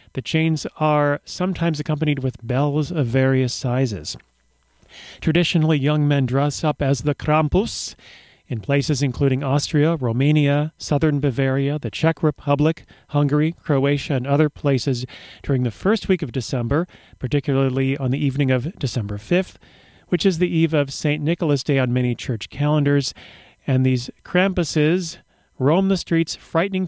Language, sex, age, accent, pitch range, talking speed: English, male, 40-59, American, 130-160 Hz, 145 wpm